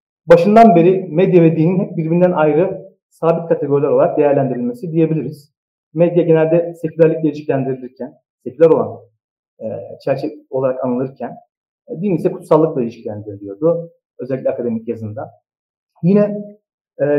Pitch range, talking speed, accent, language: 145-175 Hz, 115 wpm, native, Turkish